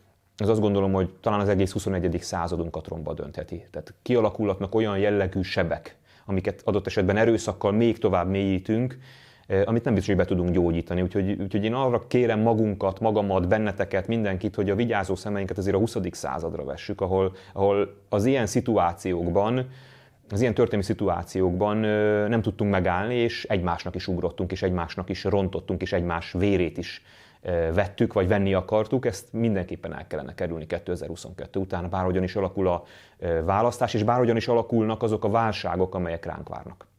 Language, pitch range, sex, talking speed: Hungarian, 95-110 Hz, male, 160 wpm